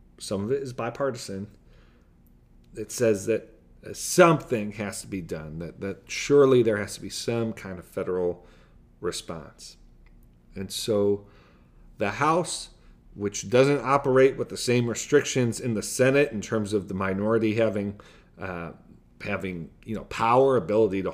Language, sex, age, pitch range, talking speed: English, male, 40-59, 90-120 Hz, 150 wpm